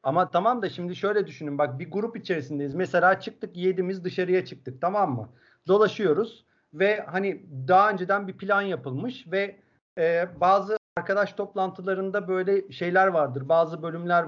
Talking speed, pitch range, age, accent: 145 wpm, 160-210 Hz, 50-69, native